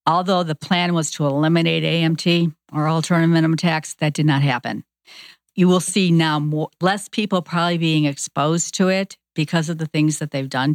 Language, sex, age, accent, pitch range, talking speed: English, female, 50-69, American, 150-170 Hz, 185 wpm